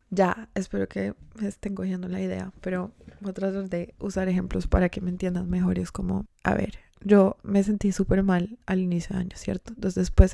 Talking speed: 205 wpm